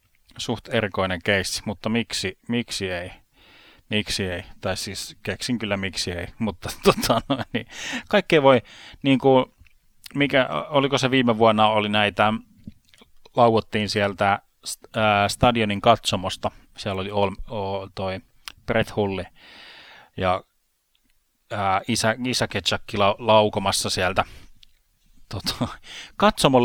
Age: 30-49